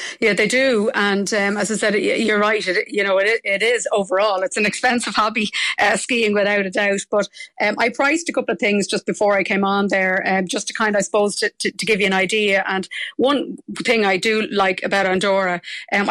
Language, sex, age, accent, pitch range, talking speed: English, female, 30-49, Irish, 190-220 Hz, 235 wpm